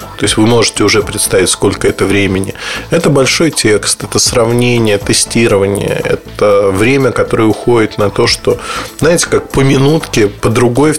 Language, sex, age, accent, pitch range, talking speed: Russian, male, 20-39, native, 105-130 Hz, 155 wpm